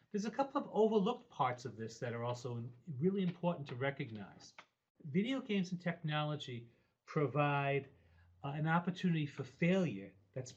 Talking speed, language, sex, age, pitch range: 150 wpm, English, male, 40-59, 130-175 Hz